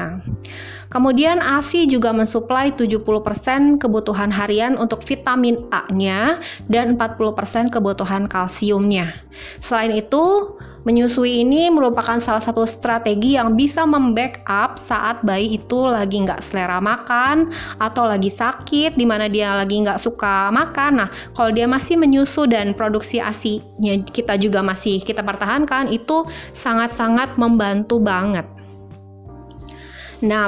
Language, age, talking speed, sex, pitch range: Indonesian, 20-39, 120 wpm, female, 210-260 Hz